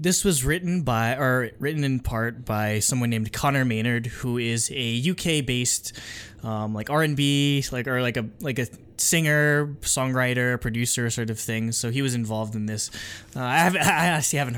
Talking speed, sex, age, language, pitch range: 180 wpm, male, 20-39, English, 115-150 Hz